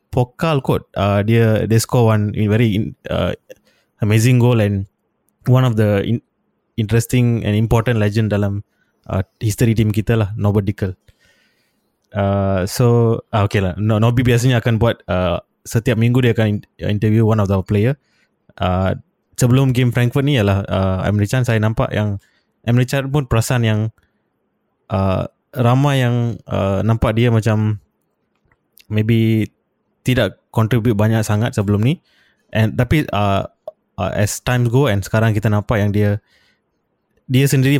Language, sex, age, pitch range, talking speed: Malay, male, 20-39, 105-125 Hz, 150 wpm